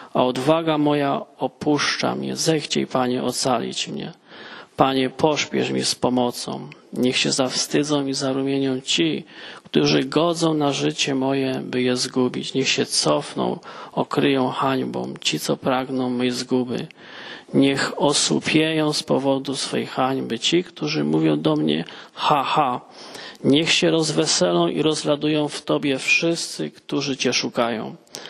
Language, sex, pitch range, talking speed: Polish, male, 125-150 Hz, 130 wpm